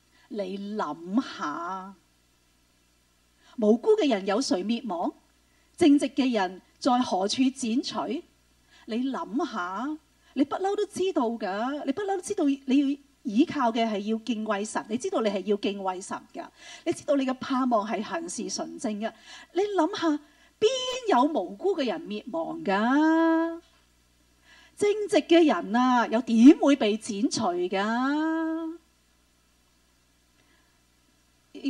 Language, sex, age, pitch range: Chinese, female, 40-59, 210-330 Hz